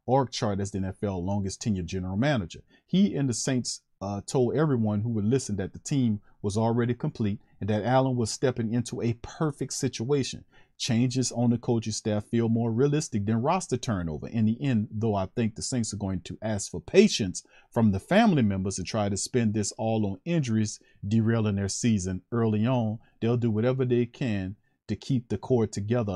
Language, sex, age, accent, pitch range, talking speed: English, male, 40-59, American, 100-125 Hz, 195 wpm